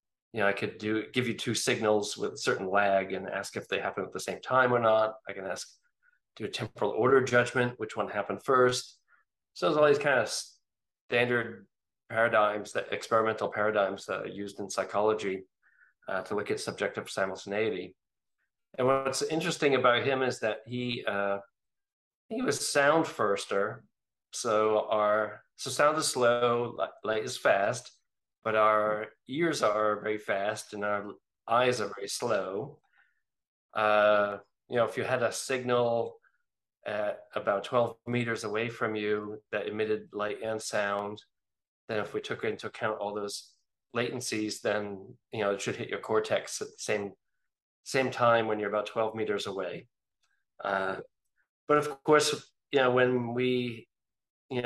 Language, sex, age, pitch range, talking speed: English, male, 40-59, 105-125 Hz, 165 wpm